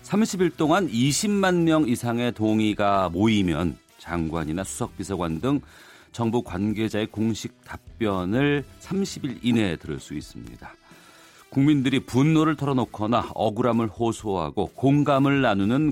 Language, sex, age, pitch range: Korean, male, 40-59, 95-150 Hz